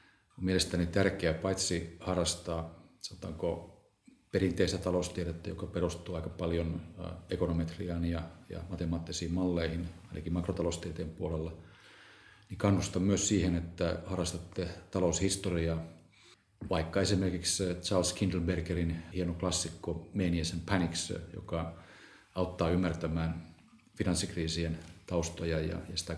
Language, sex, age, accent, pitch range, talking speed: English, male, 40-59, Finnish, 85-95 Hz, 95 wpm